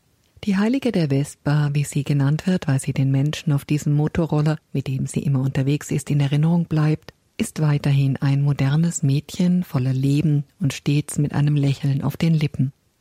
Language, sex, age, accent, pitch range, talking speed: German, female, 50-69, German, 140-170 Hz, 180 wpm